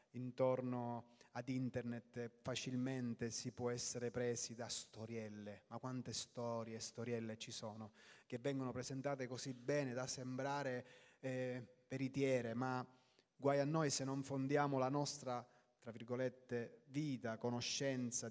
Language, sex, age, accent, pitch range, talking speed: Italian, male, 30-49, native, 120-155 Hz, 130 wpm